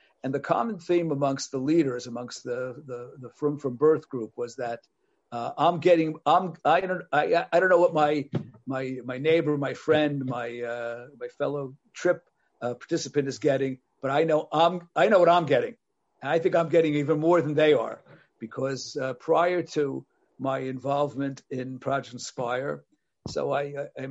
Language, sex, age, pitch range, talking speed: English, male, 50-69, 135-170 Hz, 185 wpm